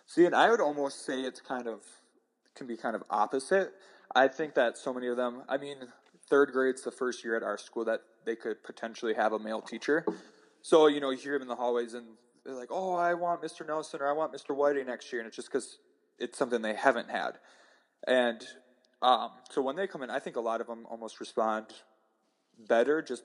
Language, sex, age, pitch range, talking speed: English, male, 20-39, 115-135 Hz, 230 wpm